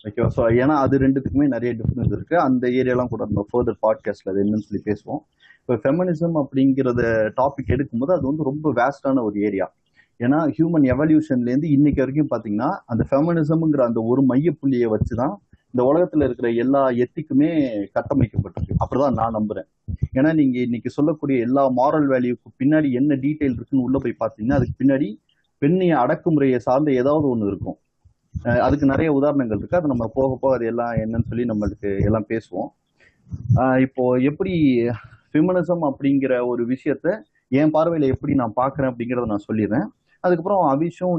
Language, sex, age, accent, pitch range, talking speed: Tamil, male, 30-49, native, 120-145 Hz, 150 wpm